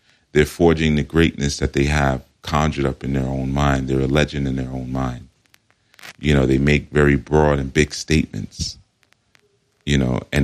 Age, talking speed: 40-59, 185 wpm